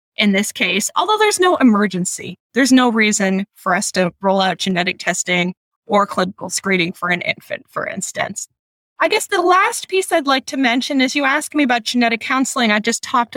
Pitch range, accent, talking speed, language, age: 190-240 Hz, American, 195 wpm, English, 20-39